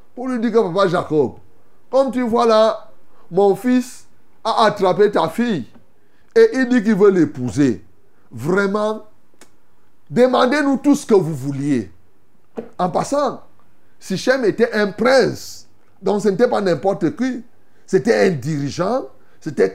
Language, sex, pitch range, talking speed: French, male, 145-220 Hz, 145 wpm